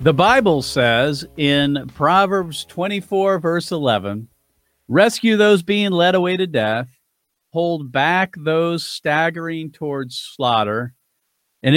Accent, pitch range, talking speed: American, 125-160 Hz, 110 wpm